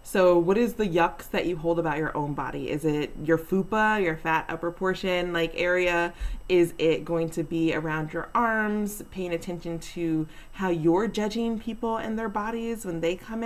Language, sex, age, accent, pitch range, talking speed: English, female, 20-39, American, 165-220 Hz, 190 wpm